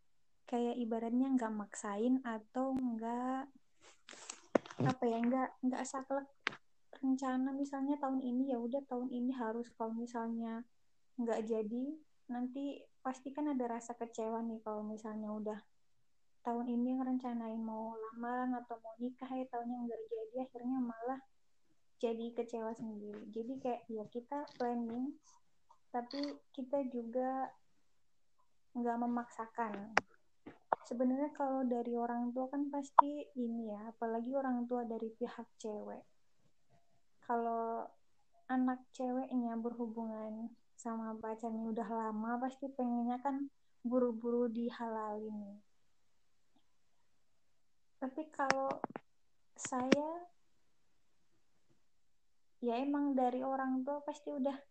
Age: 20-39